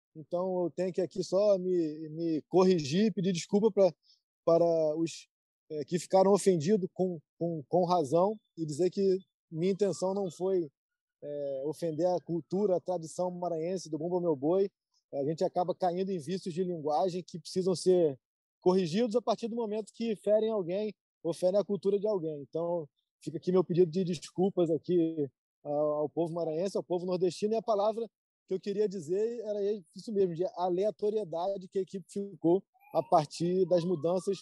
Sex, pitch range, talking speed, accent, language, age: male, 170-205 Hz, 175 wpm, Brazilian, Portuguese, 20-39